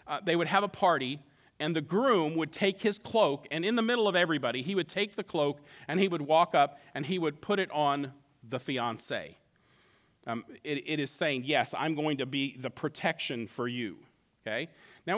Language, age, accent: English, 40-59, American